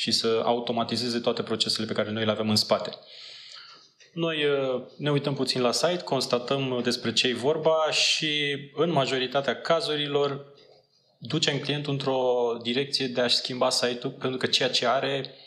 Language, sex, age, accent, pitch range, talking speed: Romanian, male, 20-39, native, 120-145 Hz, 160 wpm